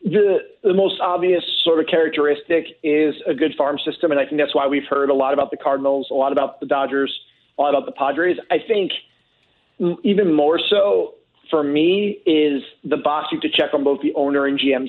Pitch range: 145-170 Hz